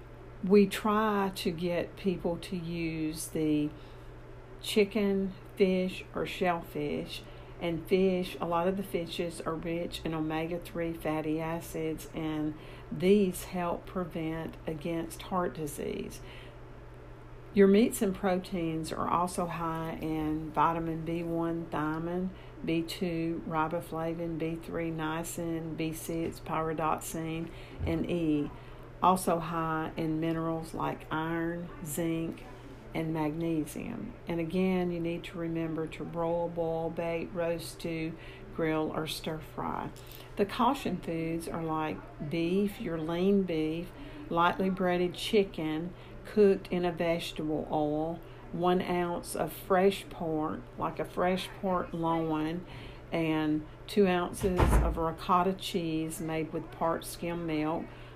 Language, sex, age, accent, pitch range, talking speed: English, female, 50-69, American, 160-180 Hz, 120 wpm